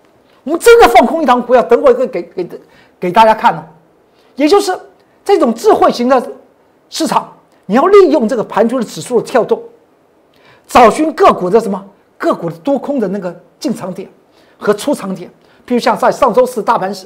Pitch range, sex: 210-315 Hz, male